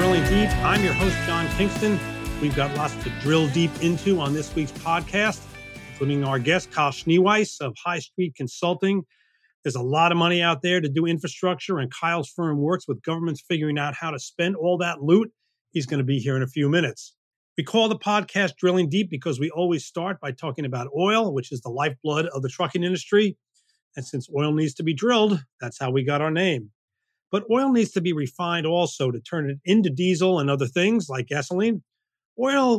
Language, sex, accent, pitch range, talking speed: English, male, American, 140-185 Hz, 205 wpm